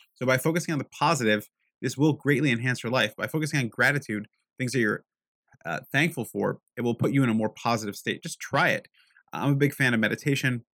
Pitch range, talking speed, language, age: 115-150 Hz, 225 wpm, English, 30-49